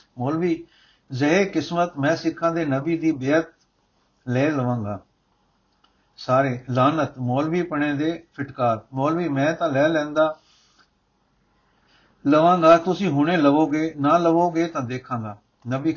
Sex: male